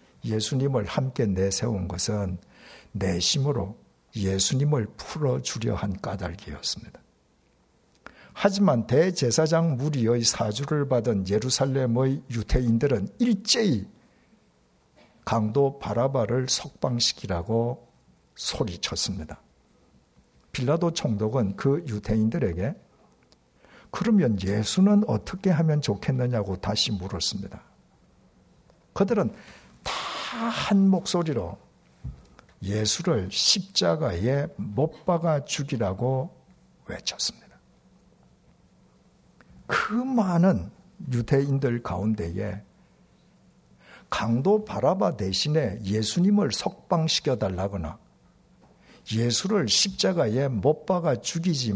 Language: Korean